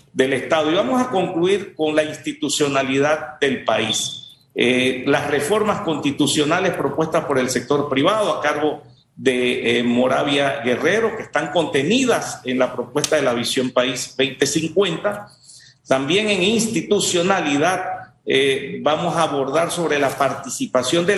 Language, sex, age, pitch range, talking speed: Spanish, male, 50-69, 135-185 Hz, 135 wpm